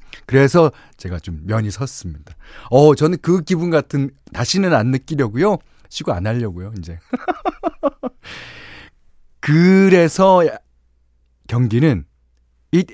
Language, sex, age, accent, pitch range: Korean, male, 40-59, native, 95-150 Hz